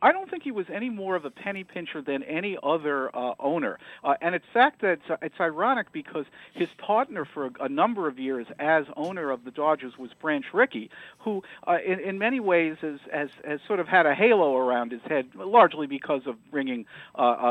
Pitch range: 135-185 Hz